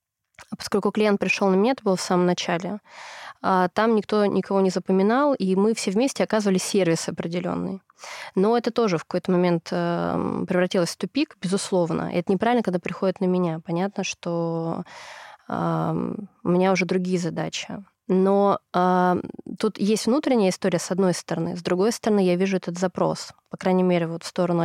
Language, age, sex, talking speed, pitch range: Russian, 20-39, female, 160 wpm, 175-205 Hz